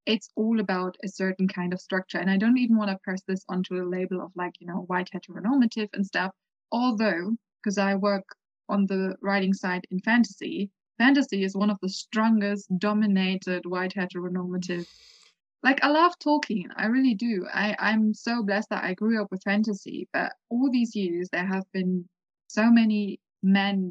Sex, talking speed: female, 180 wpm